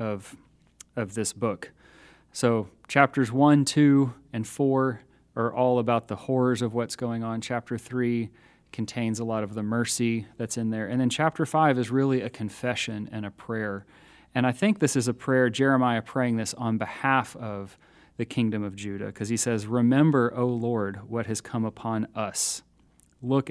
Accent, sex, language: American, male, English